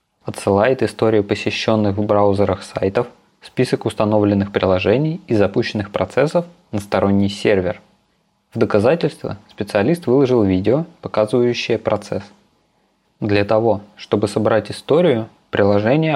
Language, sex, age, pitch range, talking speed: Russian, male, 20-39, 100-120 Hz, 105 wpm